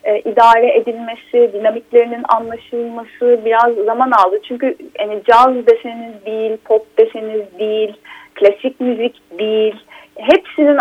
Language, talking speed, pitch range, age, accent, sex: Turkish, 105 wpm, 200-260 Hz, 30-49, native, female